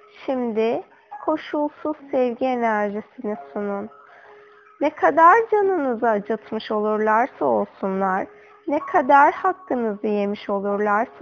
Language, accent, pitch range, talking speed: Turkish, native, 210-290 Hz, 85 wpm